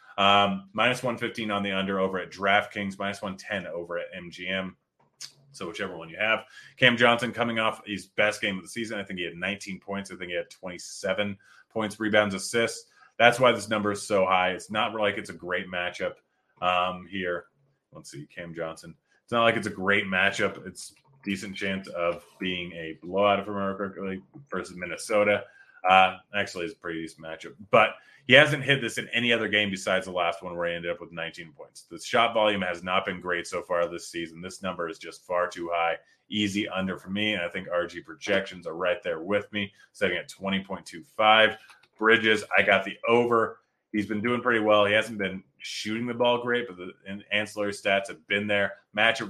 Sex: male